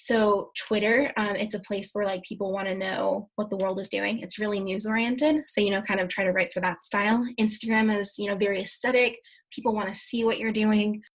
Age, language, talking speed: 20-39, English, 240 wpm